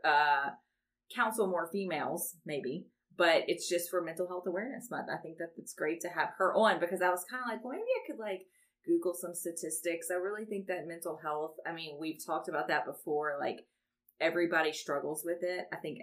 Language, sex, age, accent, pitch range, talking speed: English, female, 30-49, American, 155-195 Hz, 210 wpm